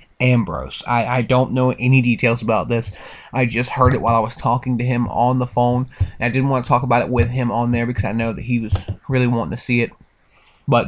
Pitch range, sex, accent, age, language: 120-130 Hz, male, American, 20-39, Japanese